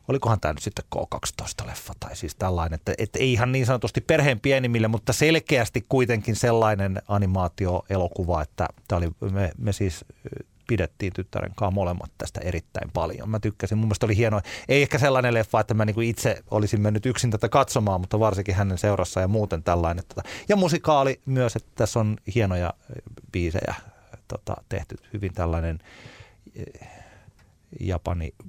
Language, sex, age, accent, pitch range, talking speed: Finnish, male, 30-49, native, 90-115 Hz, 140 wpm